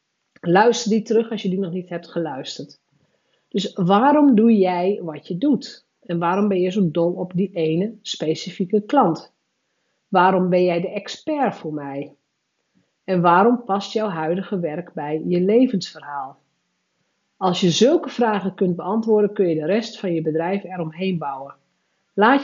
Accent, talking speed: Dutch, 160 wpm